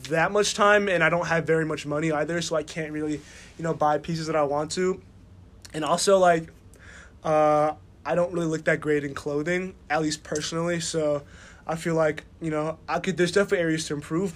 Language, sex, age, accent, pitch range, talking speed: English, male, 20-39, American, 145-165 Hz, 215 wpm